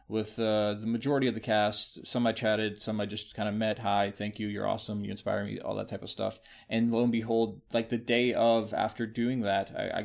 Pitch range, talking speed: 105-115 Hz, 250 wpm